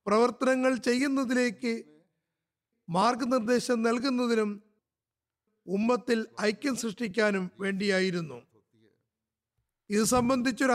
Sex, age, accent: male, 50-69, native